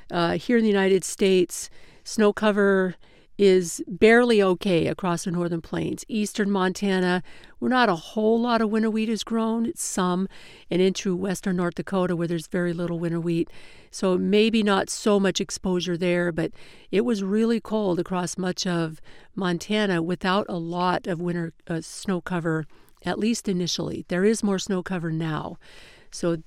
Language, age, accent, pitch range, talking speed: English, 50-69, American, 170-195 Hz, 165 wpm